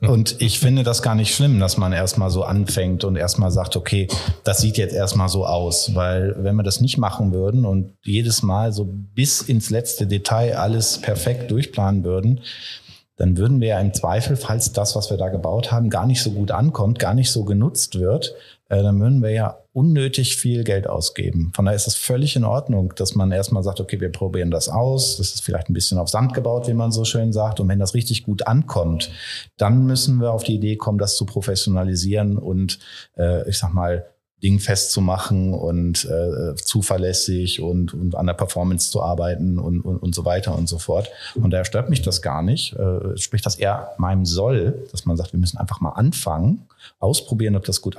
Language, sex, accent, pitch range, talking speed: German, male, German, 90-115 Hz, 210 wpm